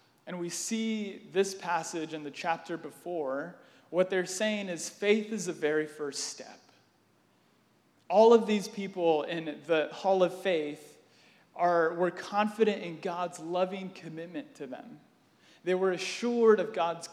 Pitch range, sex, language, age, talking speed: 155-190 Hz, male, English, 30-49, 145 wpm